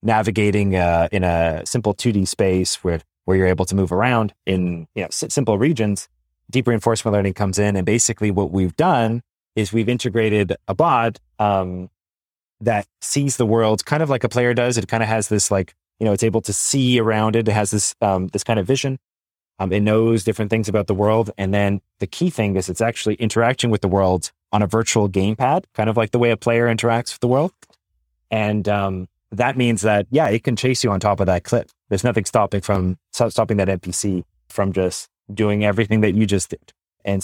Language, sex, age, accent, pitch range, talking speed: English, male, 30-49, American, 100-120 Hz, 220 wpm